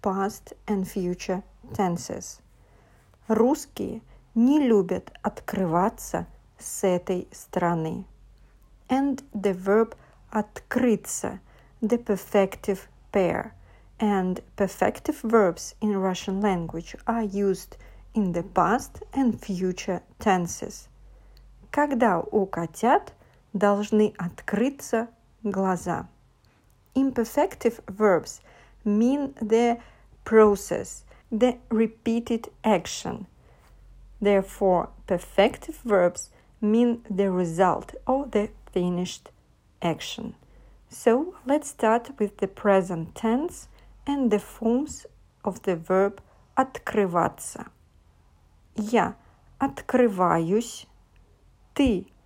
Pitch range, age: 185-235 Hz, 50-69